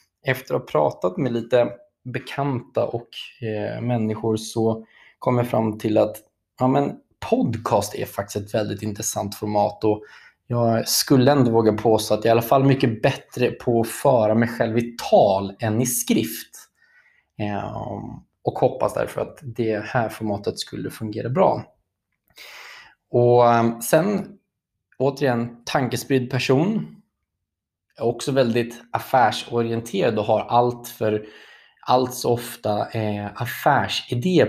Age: 20-39